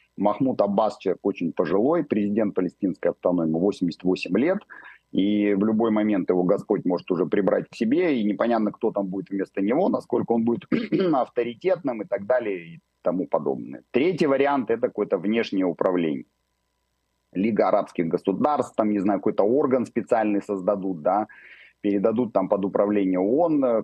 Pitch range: 95-125 Hz